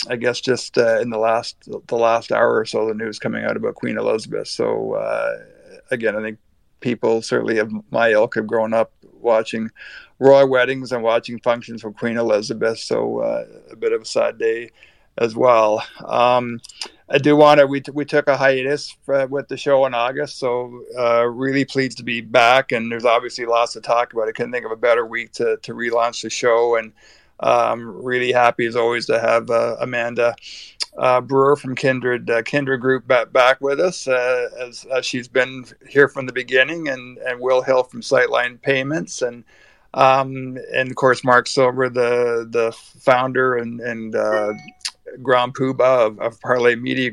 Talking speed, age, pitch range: 190 wpm, 50-69, 120-140 Hz